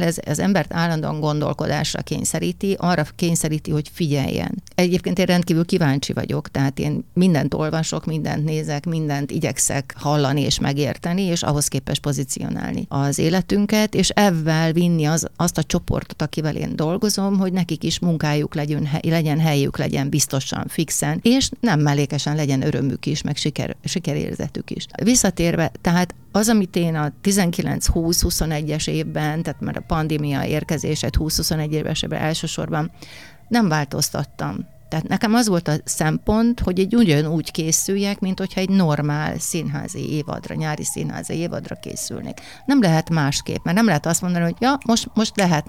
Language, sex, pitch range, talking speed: Hungarian, female, 150-180 Hz, 145 wpm